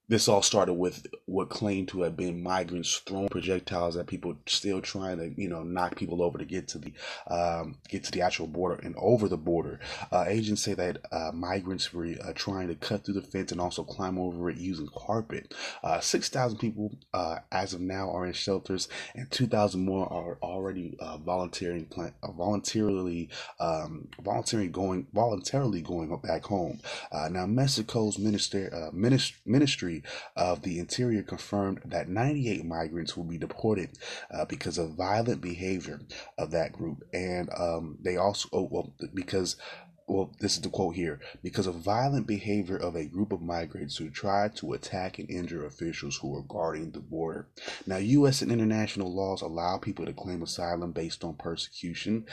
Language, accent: English, American